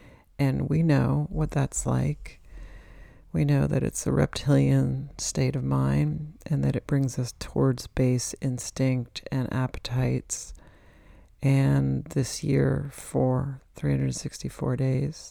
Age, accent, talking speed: 40-59, American, 120 wpm